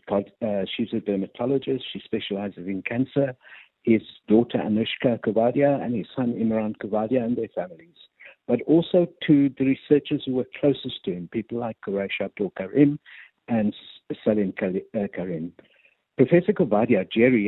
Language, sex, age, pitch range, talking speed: English, male, 60-79, 110-135 Hz, 140 wpm